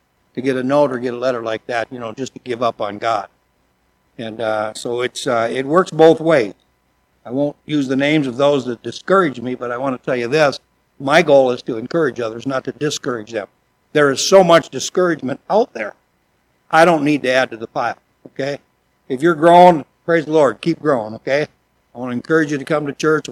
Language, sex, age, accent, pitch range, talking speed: English, male, 60-79, American, 120-165 Hz, 225 wpm